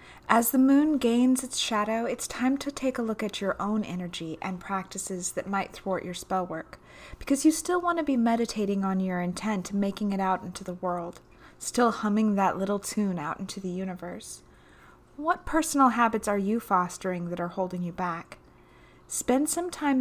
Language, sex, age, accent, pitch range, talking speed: English, female, 20-39, American, 185-255 Hz, 190 wpm